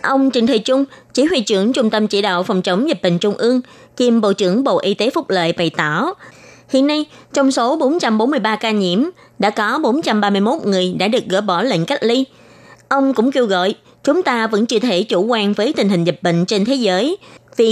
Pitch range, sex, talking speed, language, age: 195-265 Hz, female, 220 wpm, Vietnamese, 20-39